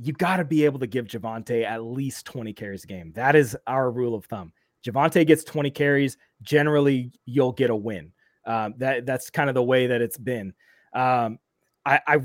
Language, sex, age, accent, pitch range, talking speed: English, male, 30-49, American, 120-145 Hz, 205 wpm